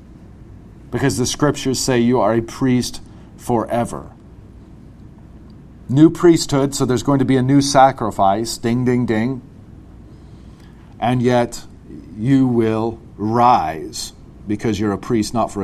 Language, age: English, 40-59